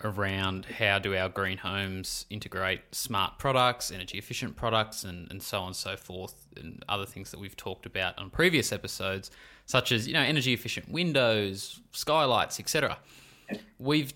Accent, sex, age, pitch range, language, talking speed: Australian, male, 20-39, 105-130 Hz, English, 155 wpm